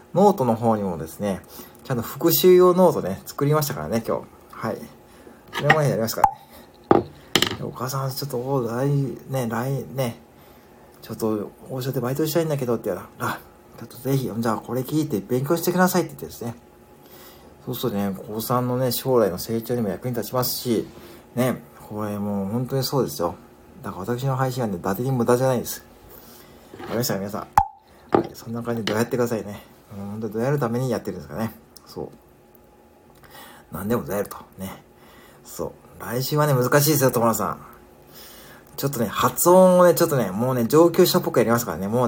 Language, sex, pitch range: Japanese, male, 115-135 Hz